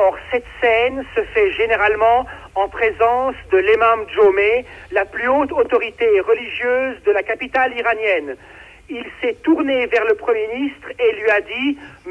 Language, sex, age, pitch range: French, male, 60-79, 225-295 Hz